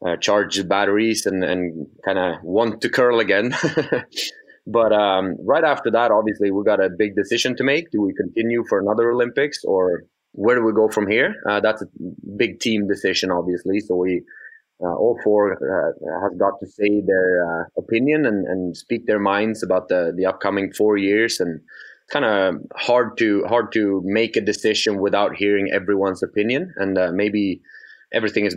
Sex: male